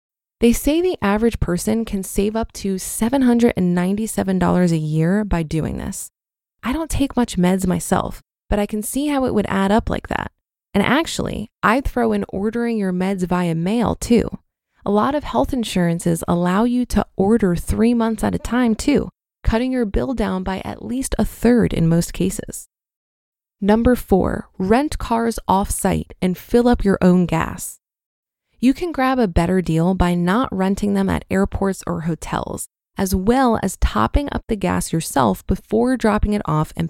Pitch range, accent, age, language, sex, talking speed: 180-235 Hz, American, 20-39, English, female, 175 wpm